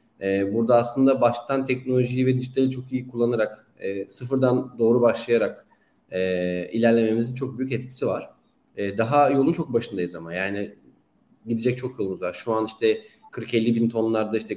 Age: 30-49